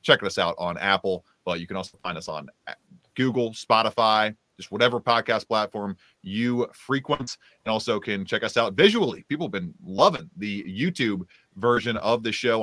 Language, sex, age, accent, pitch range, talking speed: English, male, 30-49, American, 100-125 Hz, 175 wpm